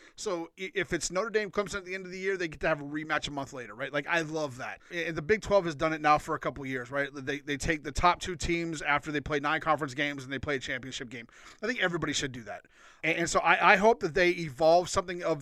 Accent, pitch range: American, 145-180 Hz